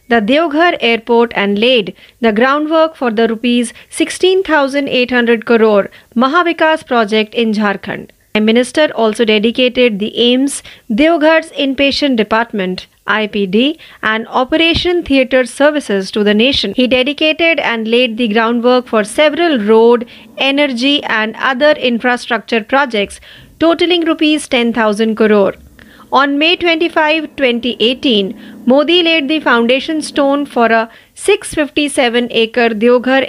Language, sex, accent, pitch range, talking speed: Marathi, female, native, 225-290 Hz, 120 wpm